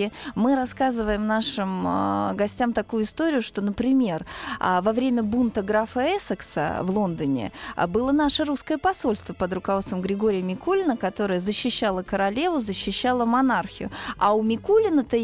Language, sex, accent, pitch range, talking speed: Russian, female, native, 200-255 Hz, 120 wpm